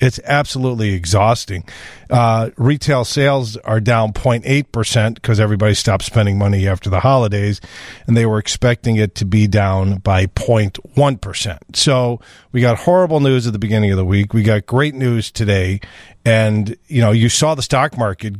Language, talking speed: English, 165 wpm